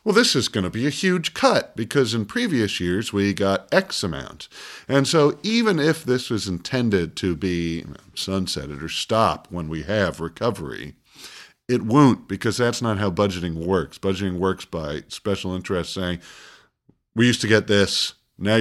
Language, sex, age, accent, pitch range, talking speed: English, male, 50-69, American, 90-110 Hz, 170 wpm